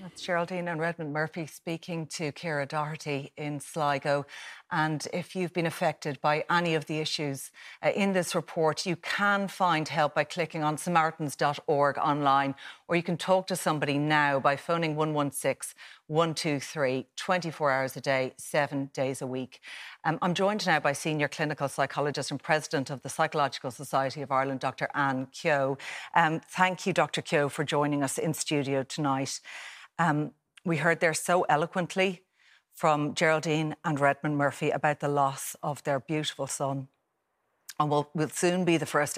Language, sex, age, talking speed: English, female, 40-59, 165 wpm